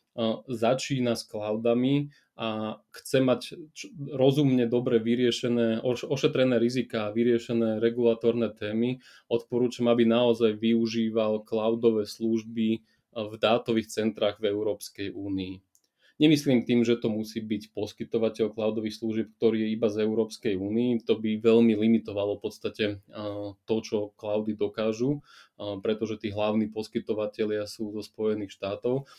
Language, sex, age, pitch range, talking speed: Slovak, male, 20-39, 110-120 Hz, 125 wpm